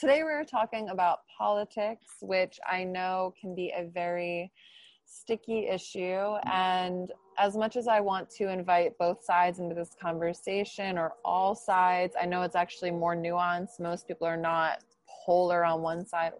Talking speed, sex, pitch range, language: 160 wpm, female, 170-200 Hz, English